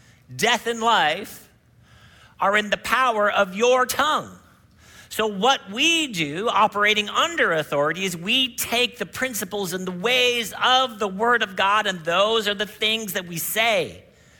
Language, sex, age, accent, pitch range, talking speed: English, male, 50-69, American, 180-260 Hz, 160 wpm